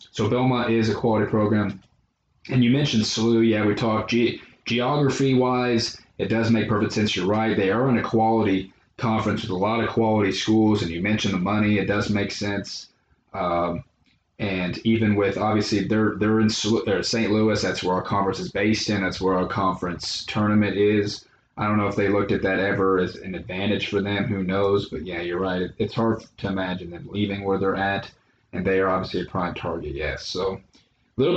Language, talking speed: English, 205 wpm